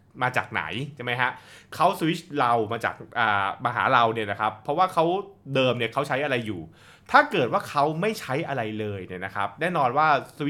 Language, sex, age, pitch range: Thai, male, 20-39, 105-145 Hz